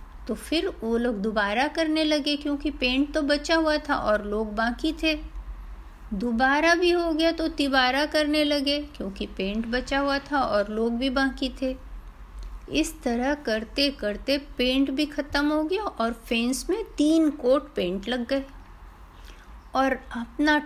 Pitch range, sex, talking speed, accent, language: 230-310 Hz, female, 155 wpm, native, Hindi